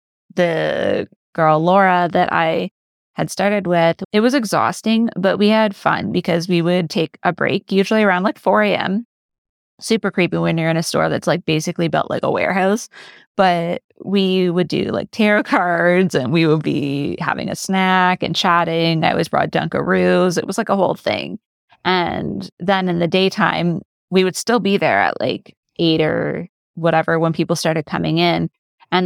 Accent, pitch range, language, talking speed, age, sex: American, 165-195 Hz, English, 180 wpm, 20-39, female